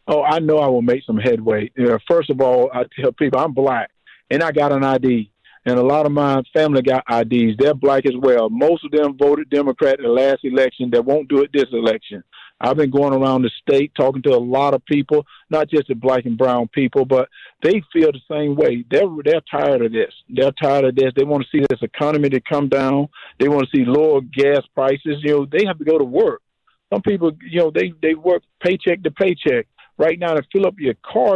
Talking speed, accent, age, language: 235 wpm, American, 50-69, English